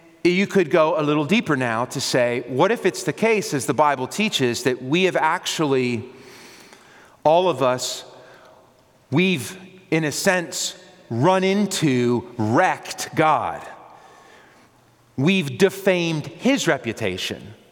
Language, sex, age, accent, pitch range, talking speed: English, male, 30-49, American, 145-205 Hz, 125 wpm